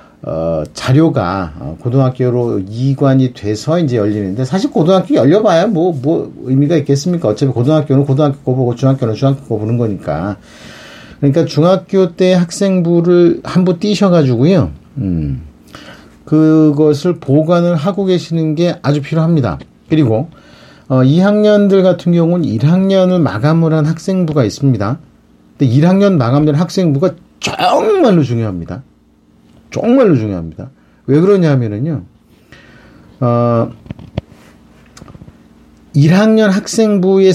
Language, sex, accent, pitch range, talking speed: English, male, Korean, 130-180 Hz, 95 wpm